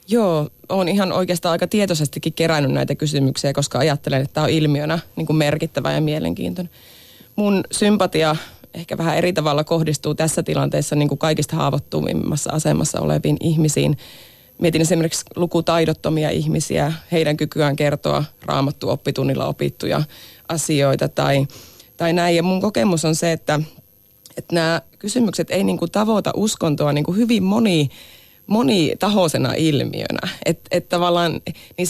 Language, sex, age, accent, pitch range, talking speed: Finnish, female, 30-49, native, 145-175 Hz, 140 wpm